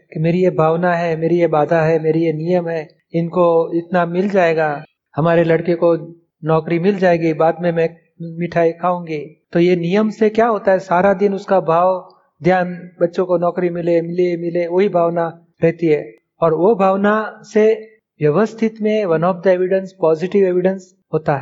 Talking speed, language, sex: 175 wpm, Hindi, male